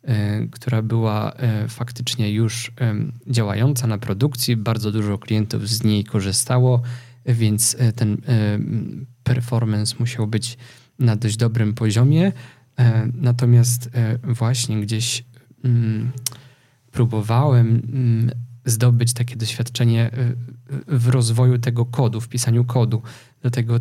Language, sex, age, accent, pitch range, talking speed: Polish, male, 20-39, native, 115-125 Hz, 95 wpm